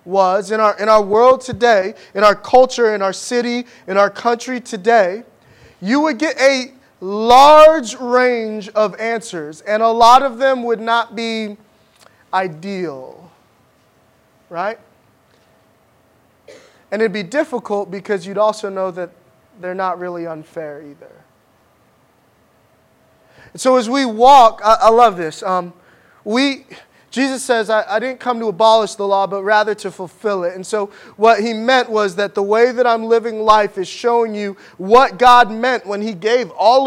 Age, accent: 20-39, American